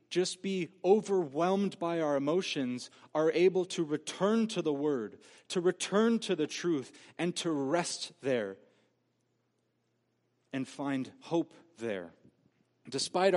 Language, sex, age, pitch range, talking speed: English, male, 30-49, 130-185 Hz, 120 wpm